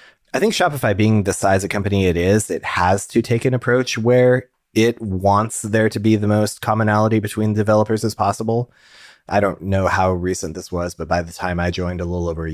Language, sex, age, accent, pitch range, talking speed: English, male, 30-49, American, 85-105 Hz, 220 wpm